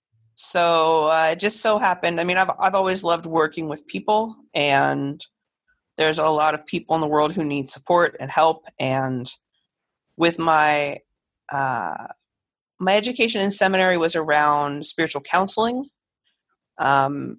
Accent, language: American, English